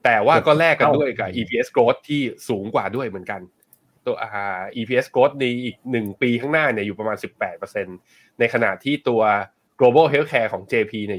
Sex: male